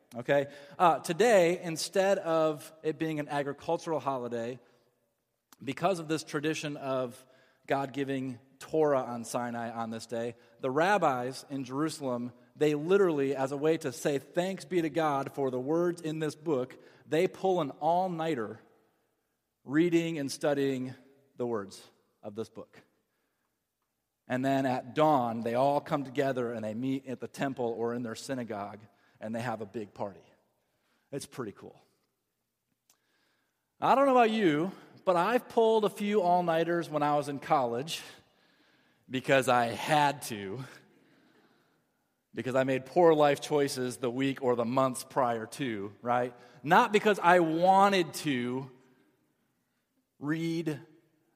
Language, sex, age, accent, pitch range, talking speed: English, male, 30-49, American, 125-165 Hz, 145 wpm